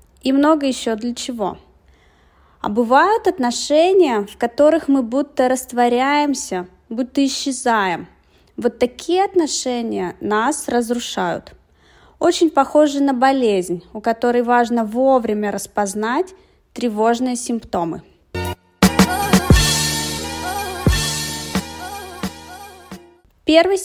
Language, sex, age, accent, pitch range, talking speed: Russian, female, 20-39, native, 215-285 Hz, 80 wpm